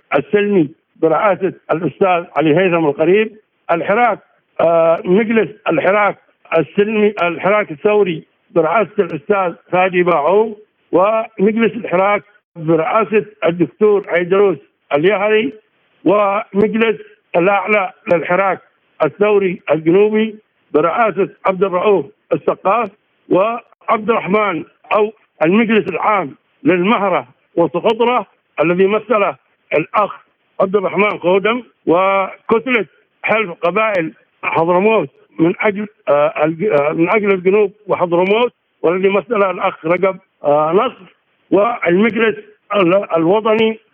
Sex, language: male, Arabic